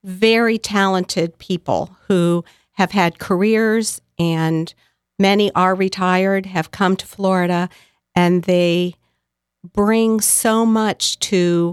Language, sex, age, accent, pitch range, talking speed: English, female, 50-69, American, 165-205 Hz, 105 wpm